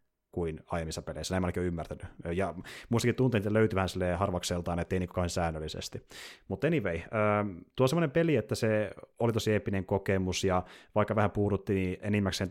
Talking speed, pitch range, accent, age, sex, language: 160 wpm, 90-110 Hz, native, 30-49, male, Finnish